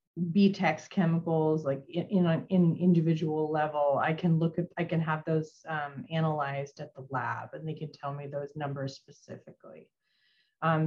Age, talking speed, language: 30-49, 170 wpm, English